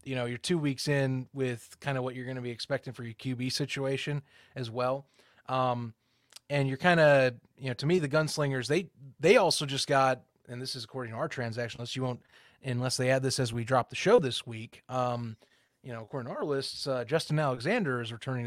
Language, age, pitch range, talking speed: English, 30-49, 125-145 Hz, 225 wpm